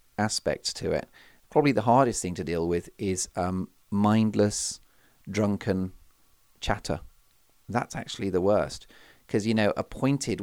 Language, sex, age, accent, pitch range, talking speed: English, male, 40-59, British, 90-115 Hz, 140 wpm